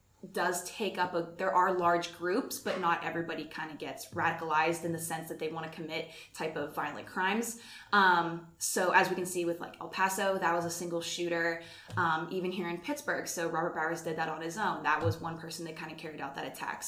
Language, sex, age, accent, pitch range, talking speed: English, female, 20-39, American, 160-185 Hz, 235 wpm